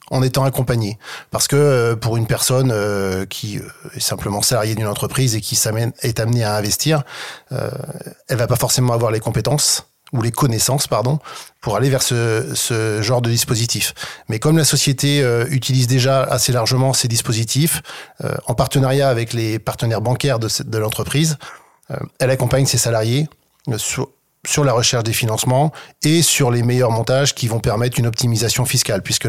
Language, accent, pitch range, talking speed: French, French, 115-135 Hz, 180 wpm